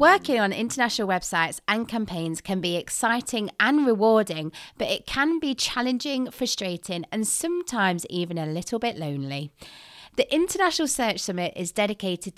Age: 30-49